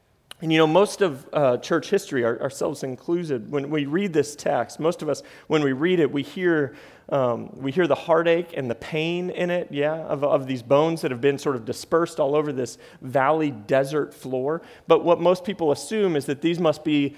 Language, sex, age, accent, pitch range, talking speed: English, male, 40-59, American, 130-160 Hz, 215 wpm